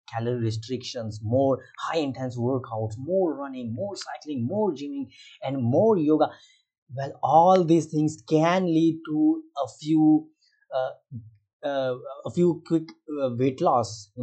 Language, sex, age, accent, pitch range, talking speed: Hindi, male, 30-49, native, 110-150 Hz, 140 wpm